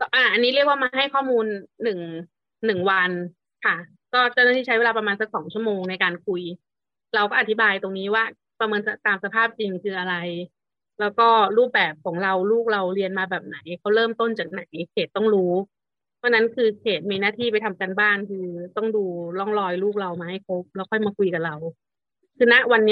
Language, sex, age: Thai, female, 30-49